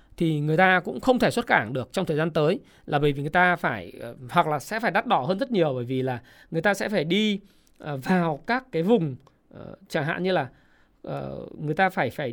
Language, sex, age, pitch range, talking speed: Vietnamese, male, 20-39, 165-230 Hz, 235 wpm